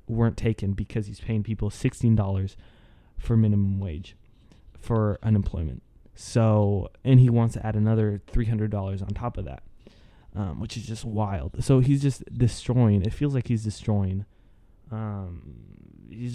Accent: American